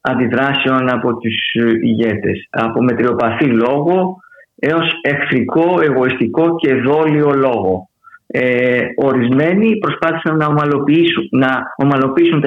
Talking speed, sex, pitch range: 90 wpm, male, 125-155 Hz